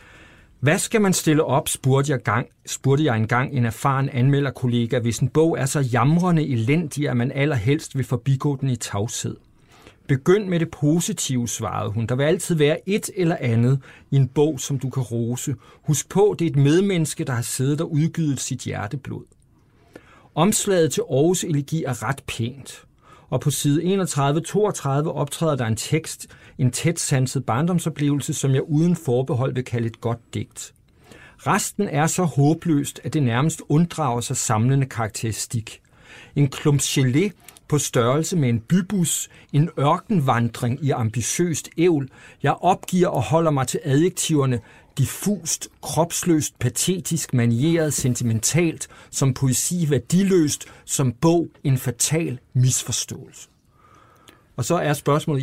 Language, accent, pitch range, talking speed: Danish, native, 120-155 Hz, 145 wpm